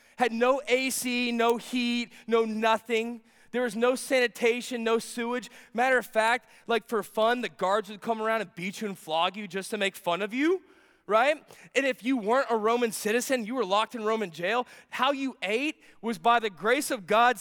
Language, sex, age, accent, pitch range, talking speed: English, male, 20-39, American, 220-280 Hz, 205 wpm